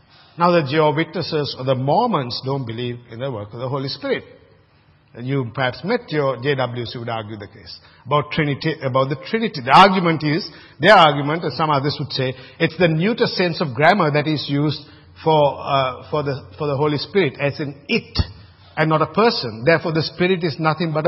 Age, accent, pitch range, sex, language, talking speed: 50-69, Indian, 145-200 Hz, male, English, 200 wpm